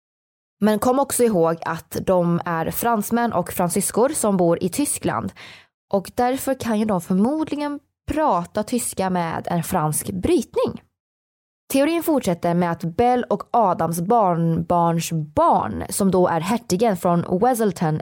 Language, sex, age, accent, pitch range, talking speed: Swedish, female, 20-39, native, 170-235 Hz, 140 wpm